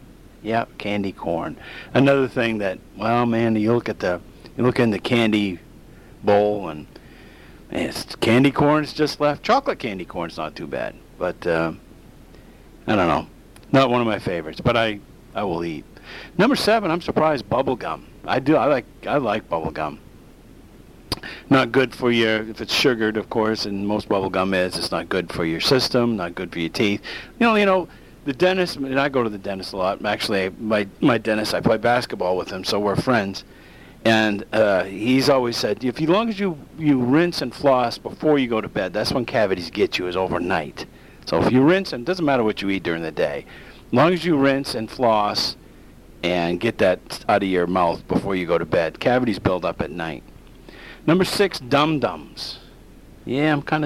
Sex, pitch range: male, 100-140 Hz